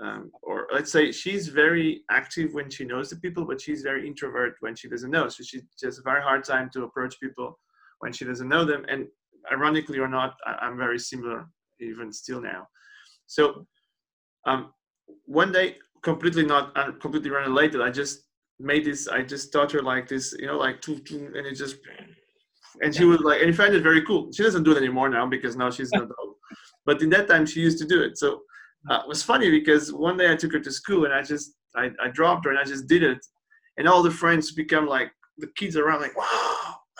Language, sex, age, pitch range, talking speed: English, male, 20-39, 135-175 Hz, 220 wpm